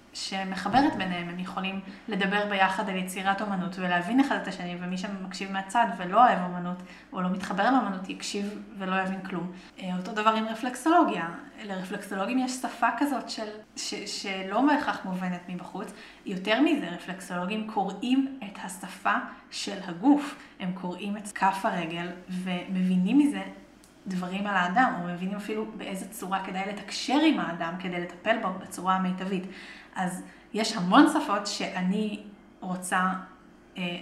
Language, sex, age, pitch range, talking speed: Hebrew, female, 20-39, 185-225 Hz, 145 wpm